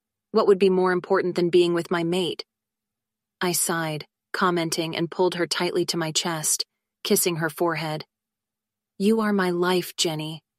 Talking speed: 160 wpm